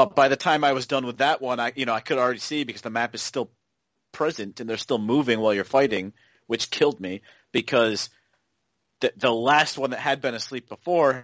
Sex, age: male, 30-49